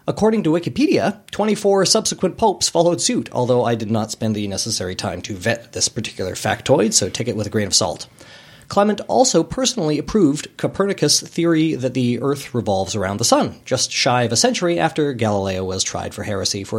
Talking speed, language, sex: 195 wpm, English, male